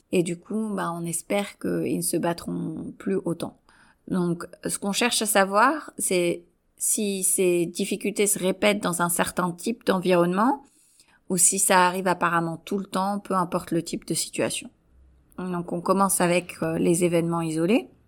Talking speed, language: 170 wpm, French